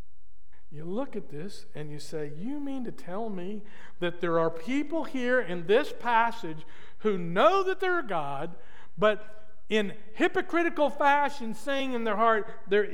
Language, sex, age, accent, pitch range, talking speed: English, male, 50-69, American, 165-250 Hz, 160 wpm